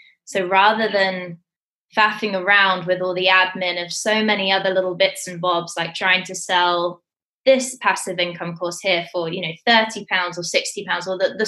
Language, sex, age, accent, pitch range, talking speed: English, female, 20-39, British, 175-195 Hz, 190 wpm